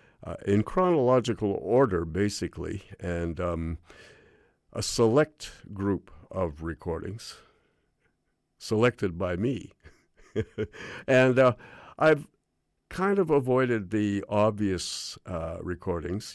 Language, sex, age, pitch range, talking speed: English, male, 50-69, 90-110 Hz, 90 wpm